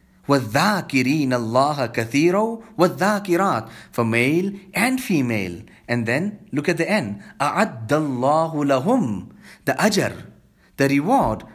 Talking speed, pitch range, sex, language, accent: 100 wpm, 120-175 Hz, male, English, Indian